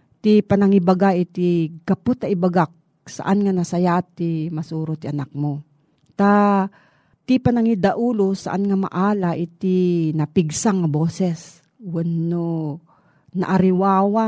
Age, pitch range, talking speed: 40-59, 160-200 Hz, 100 wpm